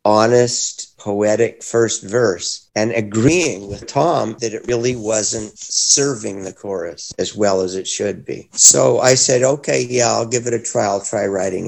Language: English